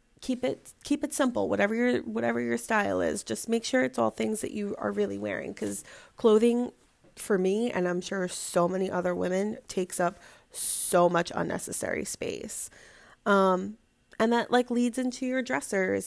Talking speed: 175 wpm